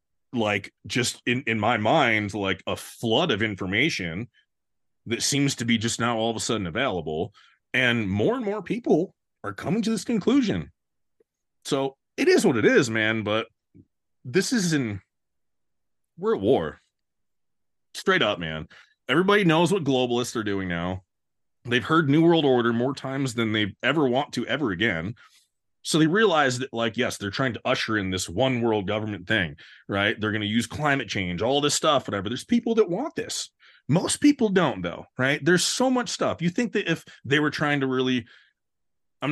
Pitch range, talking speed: 105-145 Hz, 185 wpm